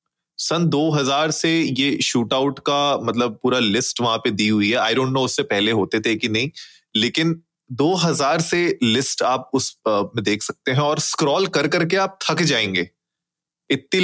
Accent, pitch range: native, 120-155 Hz